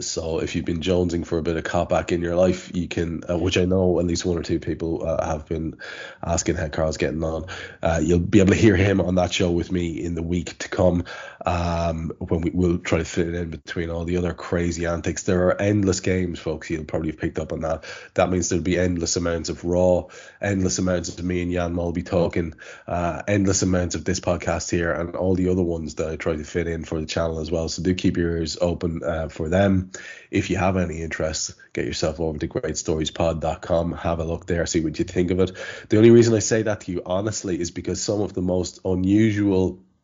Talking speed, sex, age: 245 wpm, male, 20-39